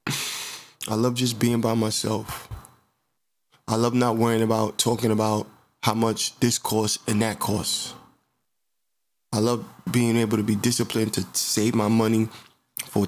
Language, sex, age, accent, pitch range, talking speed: English, male, 20-39, American, 105-120 Hz, 145 wpm